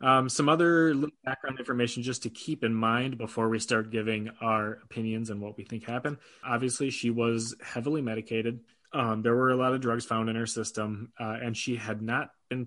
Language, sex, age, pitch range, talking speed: English, male, 20-39, 110-125 Hz, 205 wpm